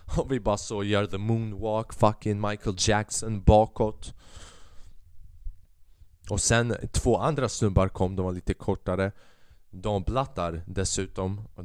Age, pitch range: 20-39, 95-120 Hz